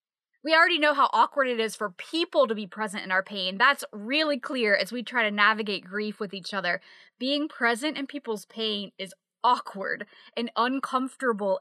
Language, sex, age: English, female, 20-39